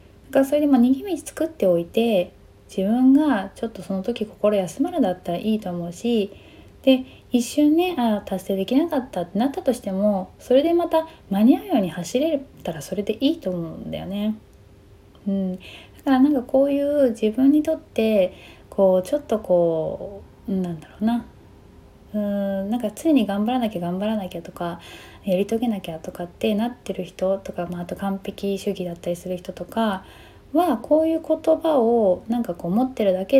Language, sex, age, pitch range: Japanese, female, 20-39, 185-265 Hz